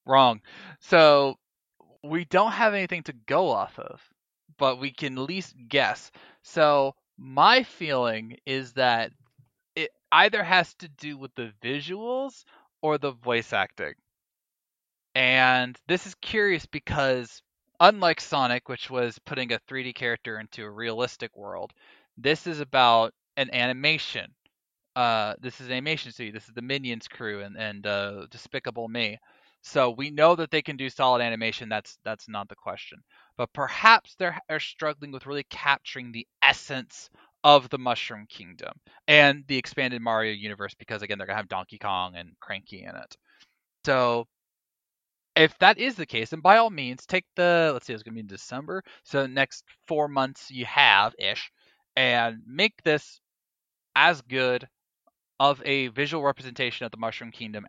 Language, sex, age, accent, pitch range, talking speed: English, male, 20-39, American, 115-150 Hz, 160 wpm